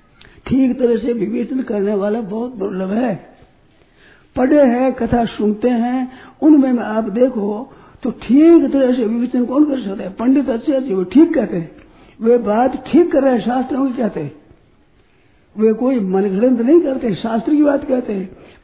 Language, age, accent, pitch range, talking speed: Hindi, 60-79, native, 215-270 Hz, 165 wpm